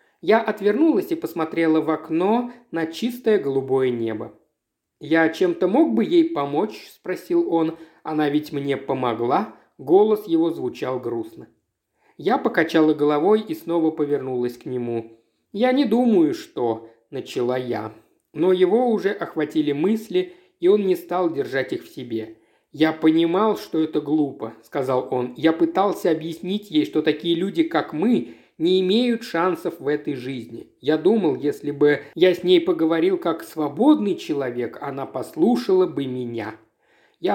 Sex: male